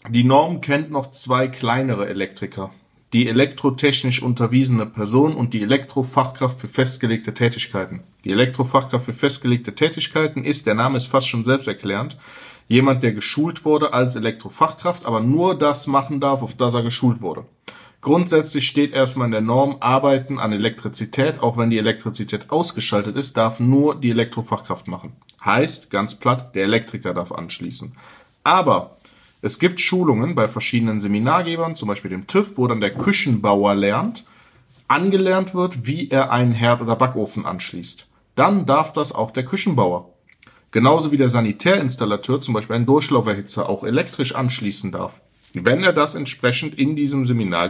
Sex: male